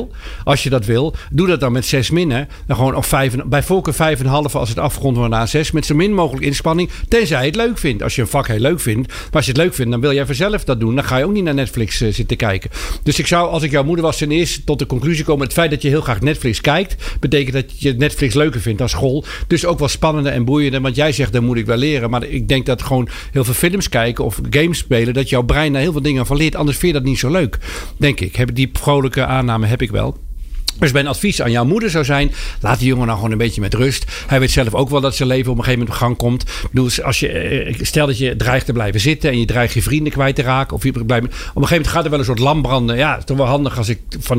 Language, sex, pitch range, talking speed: Dutch, male, 125-150 Hz, 290 wpm